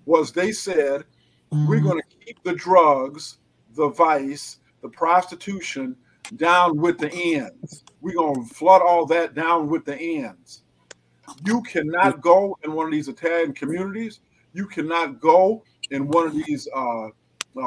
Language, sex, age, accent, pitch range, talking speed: English, male, 50-69, American, 150-190 Hz, 150 wpm